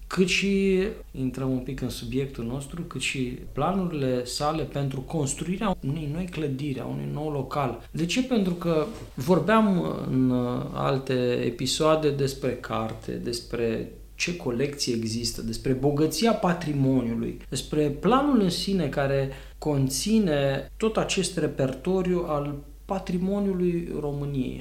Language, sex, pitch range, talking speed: English, male, 125-180 Hz, 120 wpm